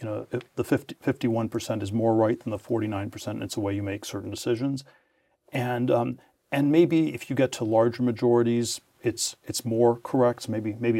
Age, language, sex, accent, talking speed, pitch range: 40-59, English, male, American, 200 wpm, 110-125 Hz